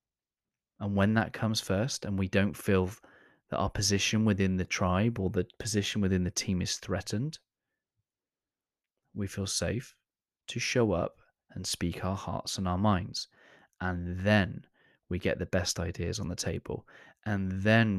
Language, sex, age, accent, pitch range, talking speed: English, male, 20-39, British, 90-105 Hz, 160 wpm